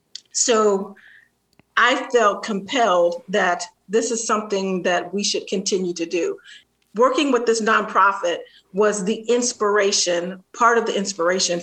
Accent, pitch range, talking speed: American, 190-230 Hz, 130 wpm